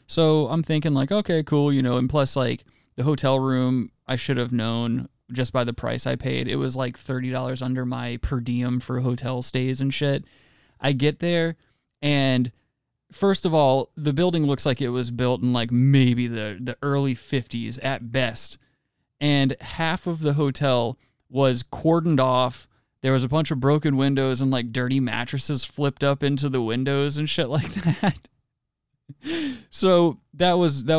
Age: 20-39